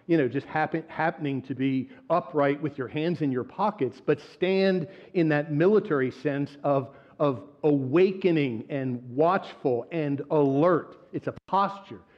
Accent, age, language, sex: American, 50-69, English, male